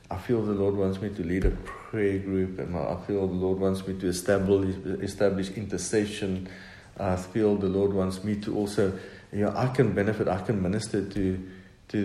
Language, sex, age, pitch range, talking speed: English, male, 50-69, 95-110 Hz, 200 wpm